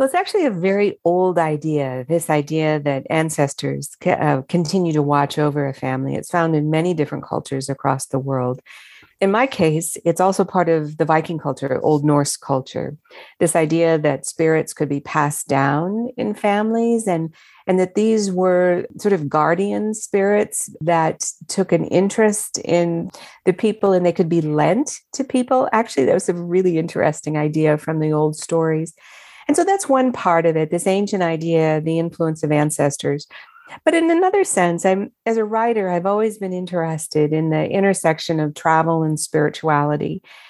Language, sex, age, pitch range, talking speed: English, female, 50-69, 155-195 Hz, 170 wpm